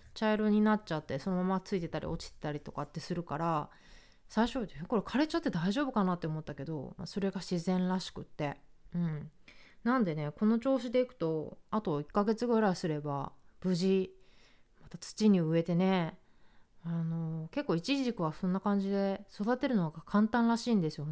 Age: 20-39